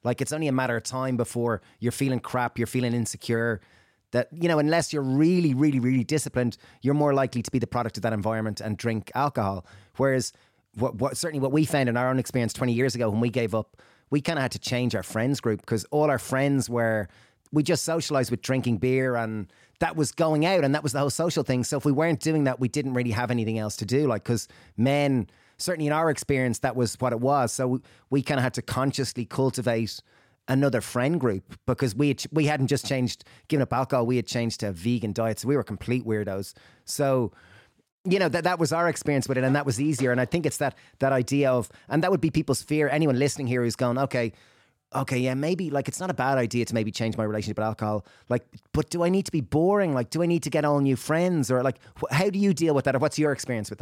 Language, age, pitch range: English, 30-49, 115-145 Hz